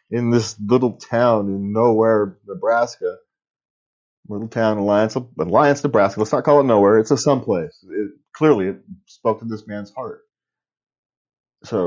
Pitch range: 105-145 Hz